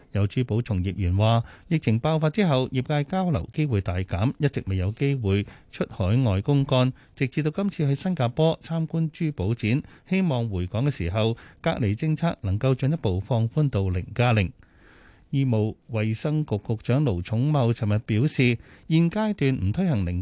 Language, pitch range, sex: Chinese, 100-145 Hz, male